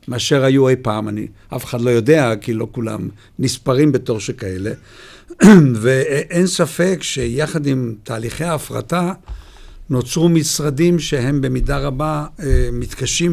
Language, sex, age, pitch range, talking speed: Hebrew, male, 60-79, 125-150 Hz, 125 wpm